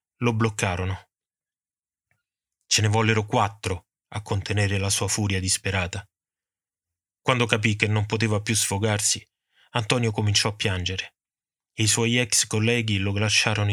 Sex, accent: male, native